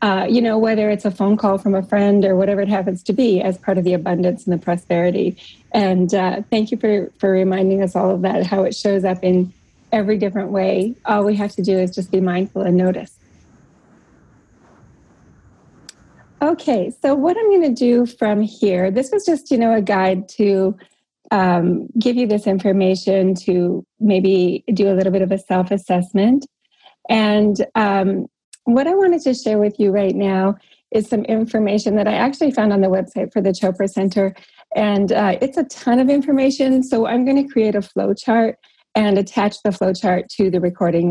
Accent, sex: American, female